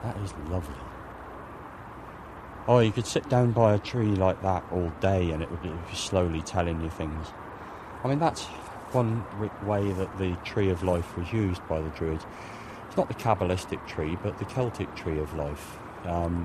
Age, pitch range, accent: 30-49, 85-105 Hz, British